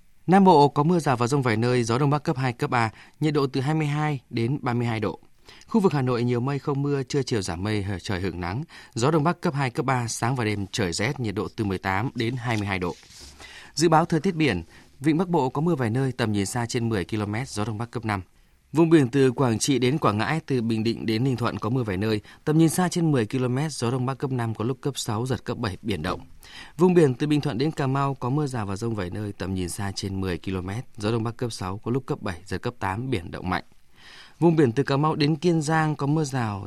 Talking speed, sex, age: 270 wpm, male, 20-39